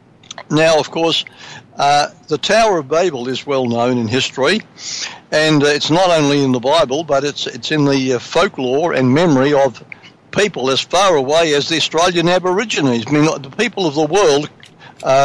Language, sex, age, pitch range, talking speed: English, male, 60-79, 135-180 Hz, 175 wpm